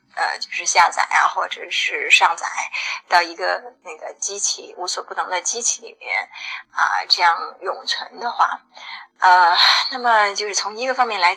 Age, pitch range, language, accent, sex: 20-39, 195-260 Hz, Chinese, native, female